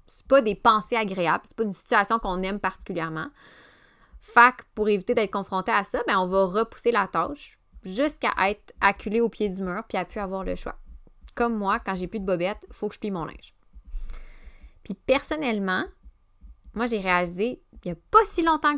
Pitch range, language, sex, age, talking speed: 185-245 Hz, French, female, 20-39, 205 wpm